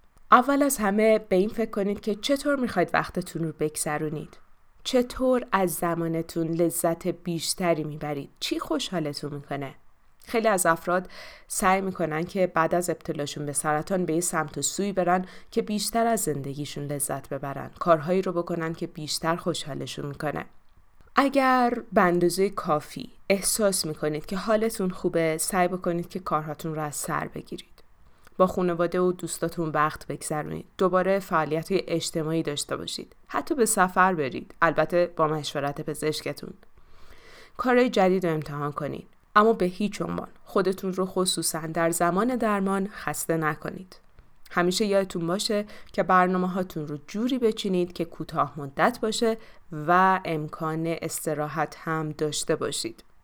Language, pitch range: Persian, 155-195 Hz